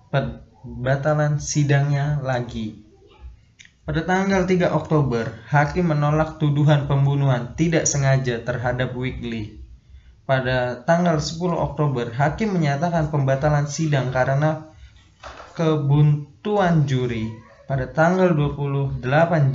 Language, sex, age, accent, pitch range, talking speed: Indonesian, male, 20-39, native, 115-150 Hz, 90 wpm